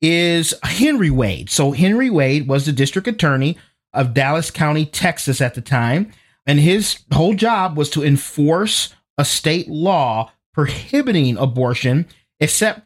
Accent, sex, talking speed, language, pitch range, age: American, male, 140 wpm, English, 135-185 Hz, 30-49